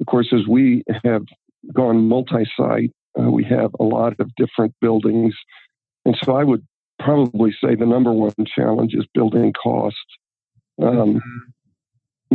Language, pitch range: English, 110-120 Hz